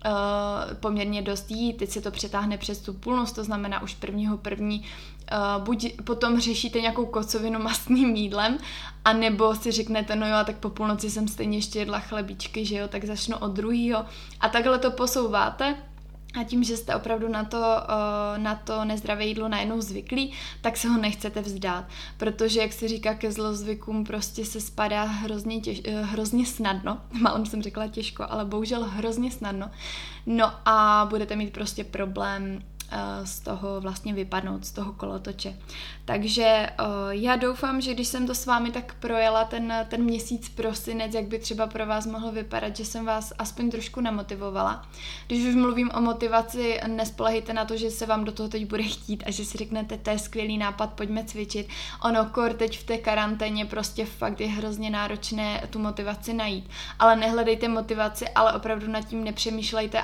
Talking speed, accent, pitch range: 175 wpm, native, 210-225 Hz